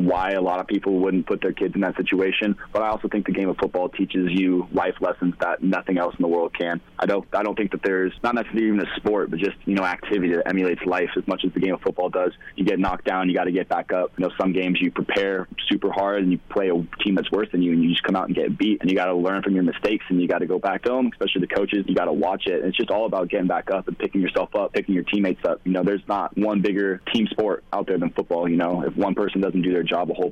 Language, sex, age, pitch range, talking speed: English, male, 20-39, 90-100 Hz, 310 wpm